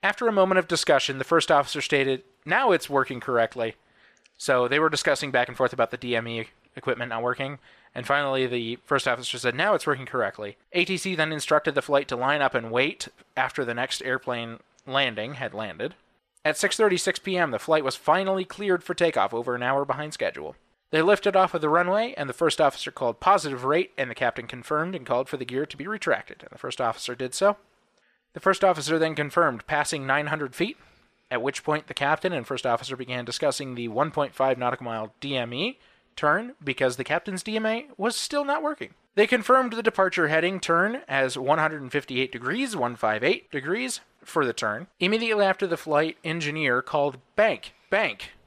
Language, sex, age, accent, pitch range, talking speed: English, male, 30-49, American, 130-185 Hz, 190 wpm